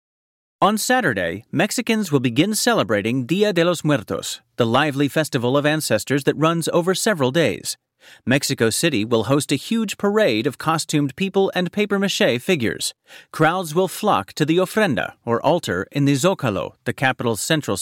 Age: 40-59